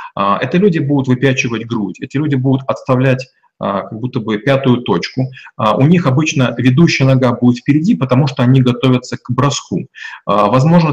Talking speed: 155 wpm